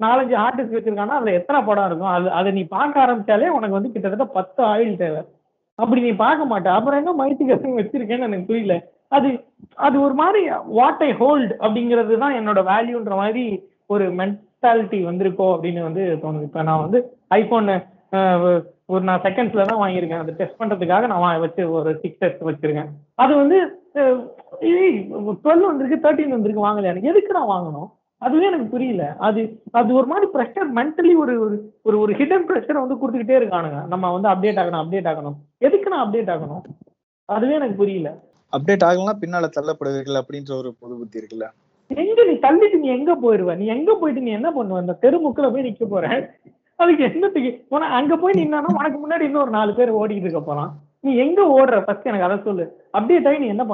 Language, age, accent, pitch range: Tamil, 20-39, native, 180-270 Hz